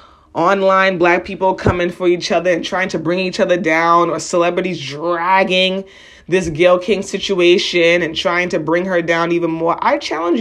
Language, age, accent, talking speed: English, 30-49, American, 180 wpm